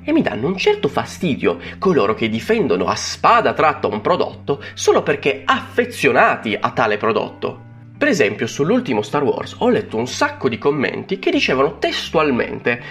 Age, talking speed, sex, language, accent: 30-49, 160 wpm, male, Italian, native